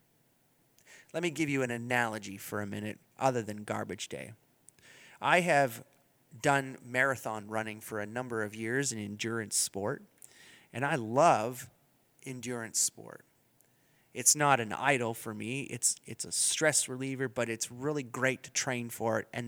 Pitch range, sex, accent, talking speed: 115-140 Hz, male, American, 155 wpm